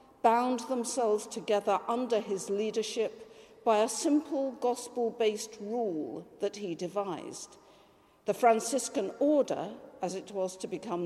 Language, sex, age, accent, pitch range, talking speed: English, female, 50-69, British, 210-275 Hz, 120 wpm